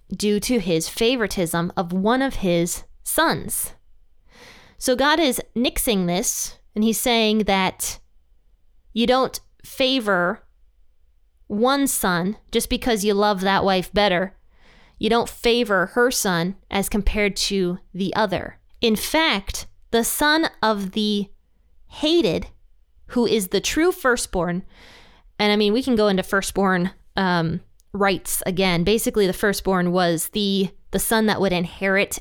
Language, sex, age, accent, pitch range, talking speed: English, female, 20-39, American, 180-225 Hz, 135 wpm